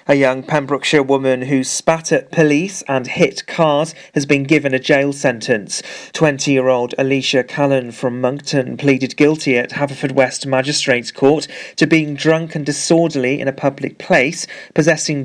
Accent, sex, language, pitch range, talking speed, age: British, male, English, 130-160 Hz, 155 wpm, 40-59